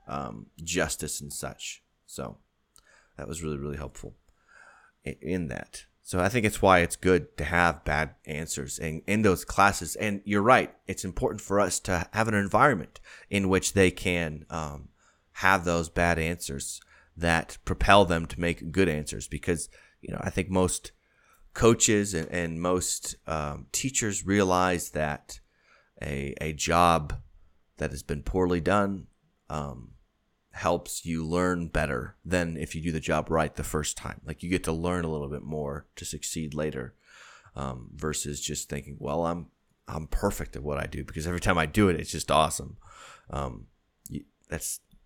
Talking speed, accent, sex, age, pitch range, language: 170 wpm, American, male, 30-49, 75-95 Hz, English